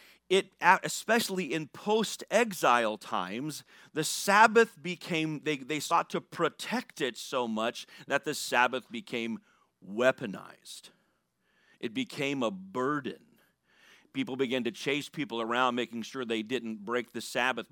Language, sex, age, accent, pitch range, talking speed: English, male, 40-59, American, 130-165 Hz, 130 wpm